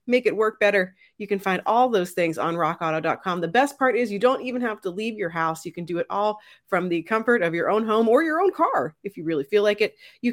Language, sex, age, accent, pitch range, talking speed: English, female, 30-49, American, 180-250 Hz, 275 wpm